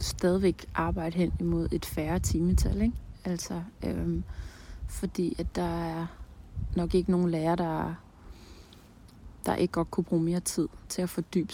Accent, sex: native, female